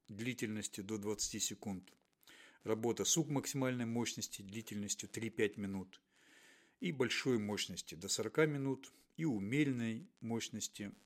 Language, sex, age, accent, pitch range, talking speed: Russian, male, 50-69, native, 105-130 Hz, 110 wpm